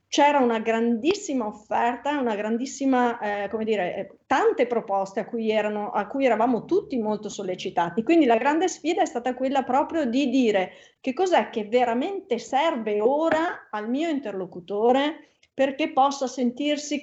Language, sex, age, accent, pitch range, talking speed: Italian, female, 40-59, native, 220-285 Hz, 150 wpm